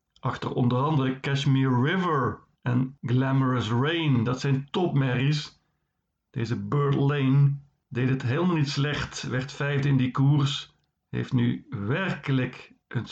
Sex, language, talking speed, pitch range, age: male, Dutch, 130 wpm, 130-145 Hz, 50-69